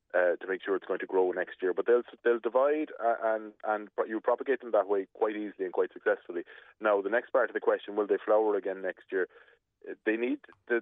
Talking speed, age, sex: 245 wpm, 30-49, male